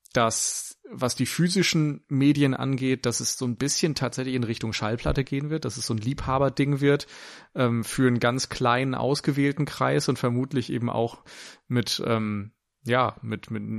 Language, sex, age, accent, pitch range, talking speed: German, male, 30-49, German, 110-135 Hz, 170 wpm